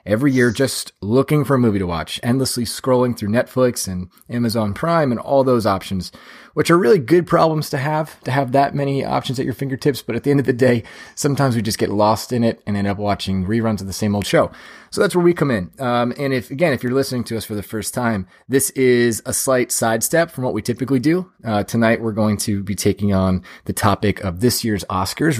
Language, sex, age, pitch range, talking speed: English, male, 30-49, 100-130 Hz, 240 wpm